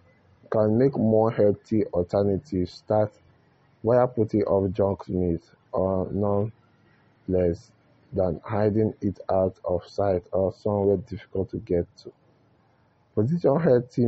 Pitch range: 95-120 Hz